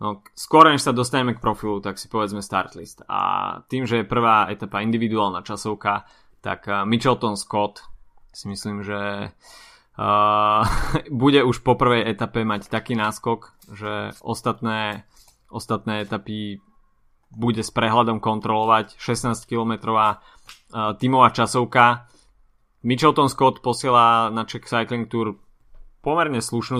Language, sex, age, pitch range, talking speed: Slovak, male, 20-39, 105-120 Hz, 130 wpm